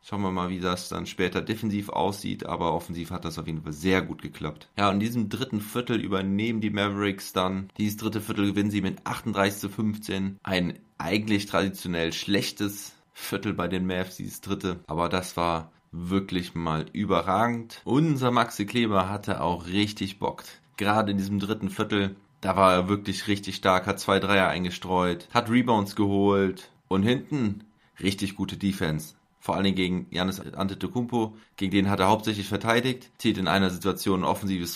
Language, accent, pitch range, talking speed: German, German, 95-110 Hz, 175 wpm